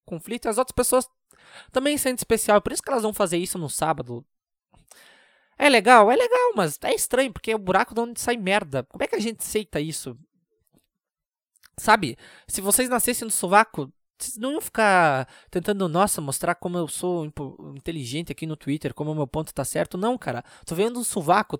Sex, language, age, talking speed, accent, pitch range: male, Portuguese, 20-39, 200 wpm, Brazilian, 155-225 Hz